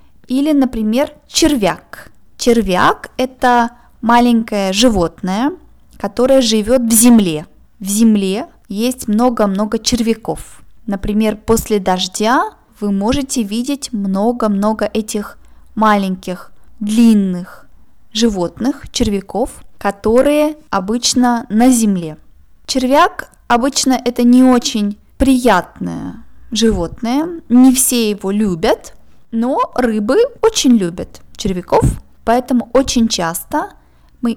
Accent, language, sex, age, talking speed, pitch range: native, Russian, female, 20-39, 90 wpm, 205-260 Hz